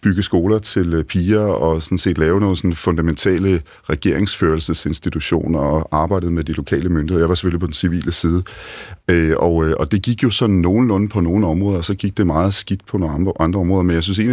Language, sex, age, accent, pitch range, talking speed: Danish, male, 40-59, native, 85-100 Hz, 195 wpm